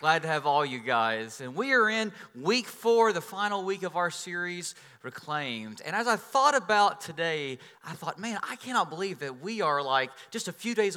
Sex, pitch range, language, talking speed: male, 160-210 Hz, English, 215 wpm